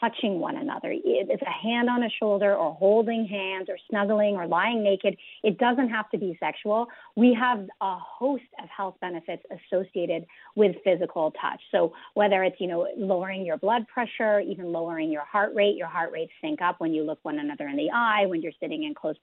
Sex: female